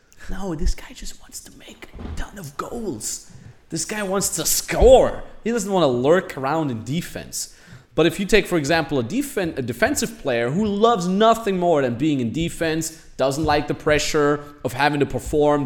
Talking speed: 190 wpm